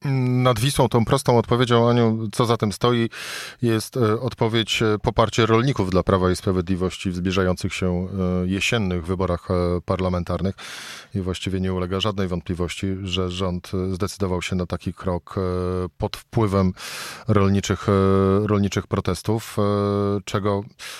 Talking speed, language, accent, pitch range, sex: 125 wpm, Polish, native, 95-115 Hz, male